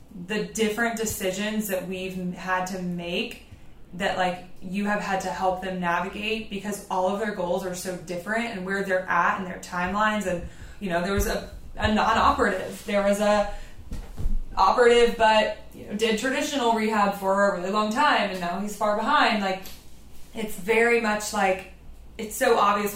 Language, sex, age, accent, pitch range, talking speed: English, female, 20-39, American, 185-225 Hz, 170 wpm